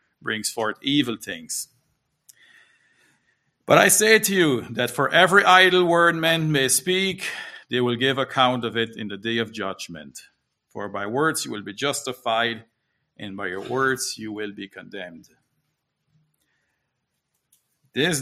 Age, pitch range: 50-69, 115-150 Hz